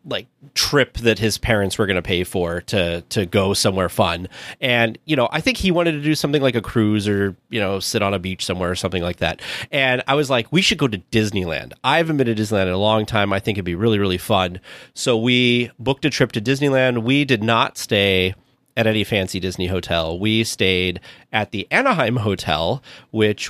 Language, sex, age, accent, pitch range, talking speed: English, male, 30-49, American, 100-130 Hz, 220 wpm